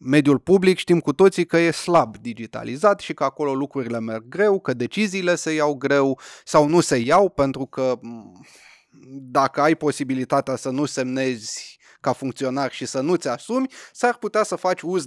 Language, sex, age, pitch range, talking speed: Romanian, male, 20-39, 130-170 Hz, 170 wpm